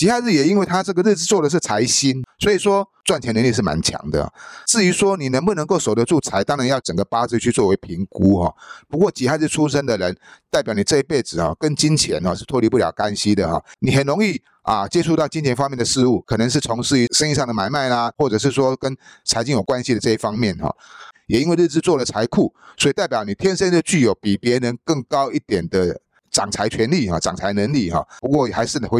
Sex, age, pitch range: male, 30-49, 115-165 Hz